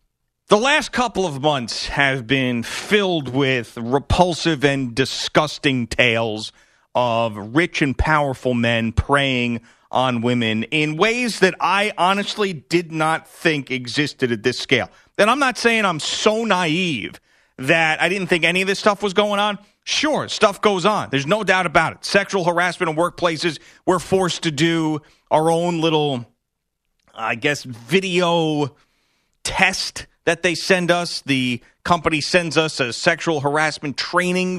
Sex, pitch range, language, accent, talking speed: male, 140-190 Hz, English, American, 150 wpm